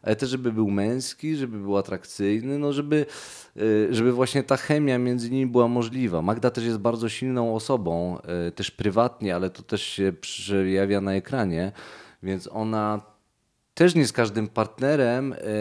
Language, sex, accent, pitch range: Polish, male, native, 95-120 Hz